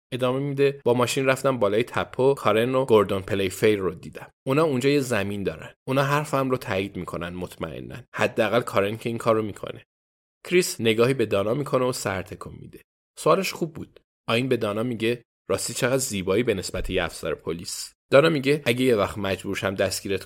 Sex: male